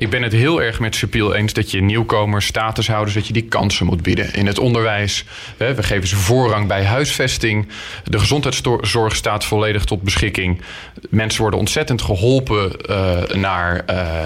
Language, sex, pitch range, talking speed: Dutch, male, 100-125 Hz, 165 wpm